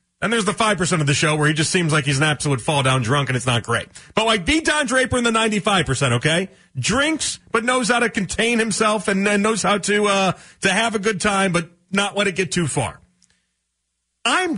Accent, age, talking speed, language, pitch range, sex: American, 40-59, 230 wpm, English, 145-200 Hz, male